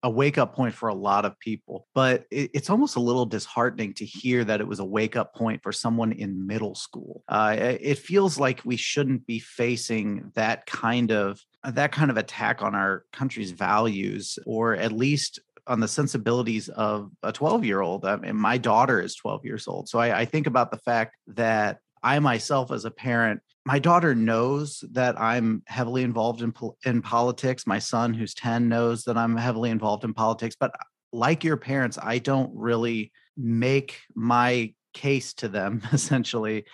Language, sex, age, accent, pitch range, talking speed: English, male, 30-49, American, 110-130 Hz, 180 wpm